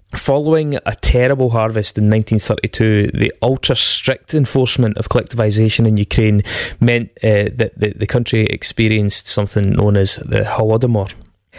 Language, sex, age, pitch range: English, male, 20-39, 105-120 Hz